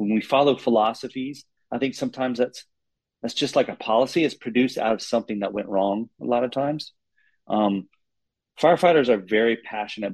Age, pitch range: 30-49, 100-120 Hz